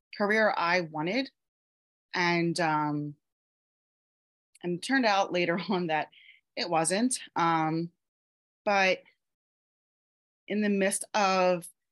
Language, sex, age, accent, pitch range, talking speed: English, female, 30-49, American, 170-205 Hz, 95 wpm